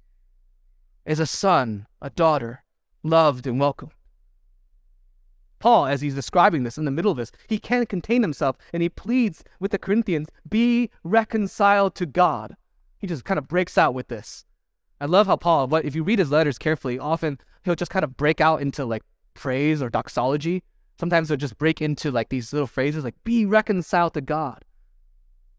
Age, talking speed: 20-39, 180 wpm